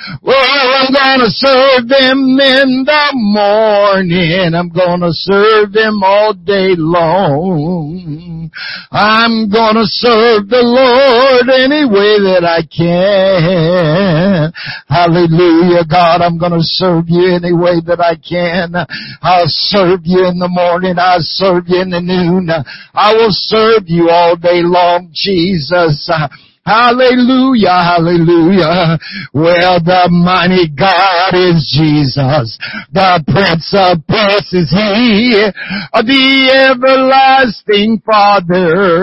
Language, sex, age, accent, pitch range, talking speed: English, male, 60-79, American, 175-215 Hz, 120 wpm